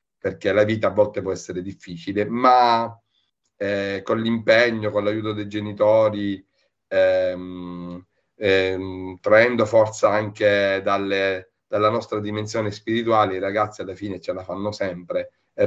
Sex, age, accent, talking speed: male, 40-59, native, 135 wpm